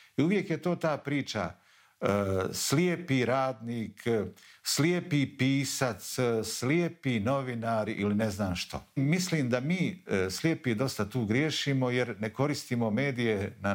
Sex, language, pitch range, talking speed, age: male, Croatian, 100-140 Hz, 120 wpm, 50-69